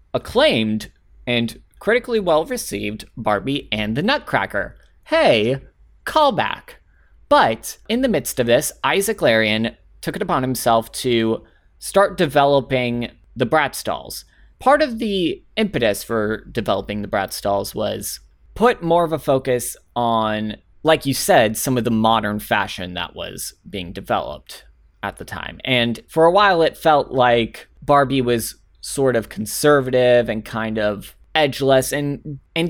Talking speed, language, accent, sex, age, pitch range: 140 wpm, English, American, male, 20-39, 110-150 Hz